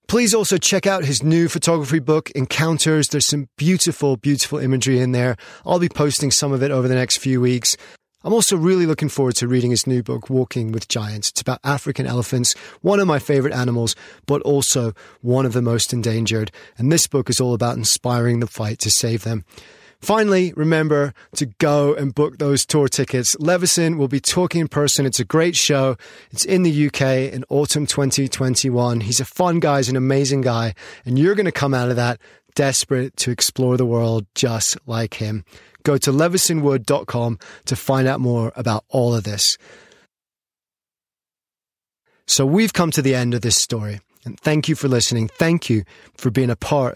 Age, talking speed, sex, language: 30-49, 190 wpm, male, English